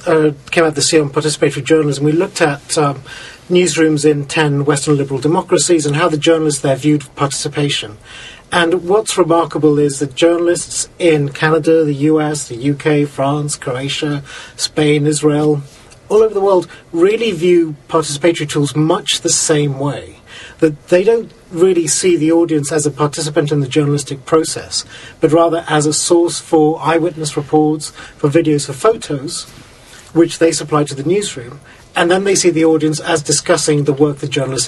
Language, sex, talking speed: English, male, 170 wpm